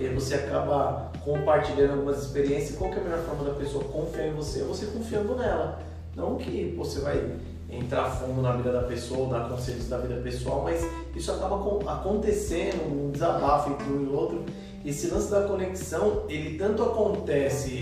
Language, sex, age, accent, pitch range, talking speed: Portuguese, male, 20-39, Brazilian, 130-205 Hz, 180 wpm